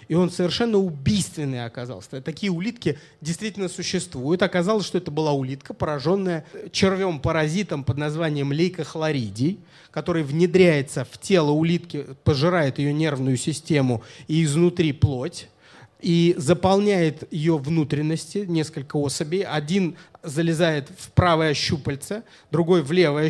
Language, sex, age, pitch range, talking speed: Russian, male, 30-49, 145-180 Hz, 115 wpm